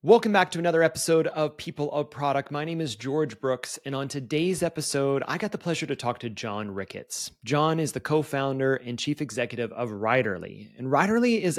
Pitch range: 120-155 Hz